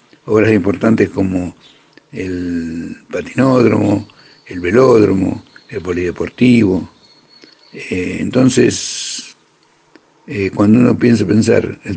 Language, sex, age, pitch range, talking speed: Spanish, male, 60-79, 100-115 Hz, 85 wpm